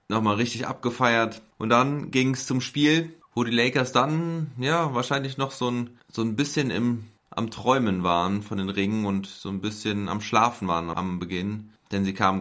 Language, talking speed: German, 195 wpm